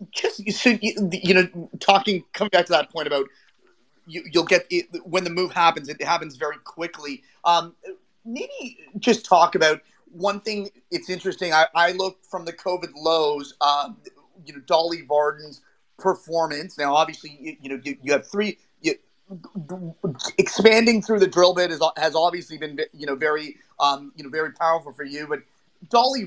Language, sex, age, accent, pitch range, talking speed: English, male, 30-49, American, 165-205 Hz, 165 wpm